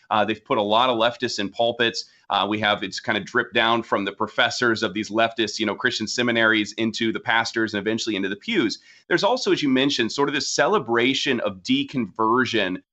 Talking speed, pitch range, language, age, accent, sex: 215 wpm, 115-150 Hz, English, 30-49, American, male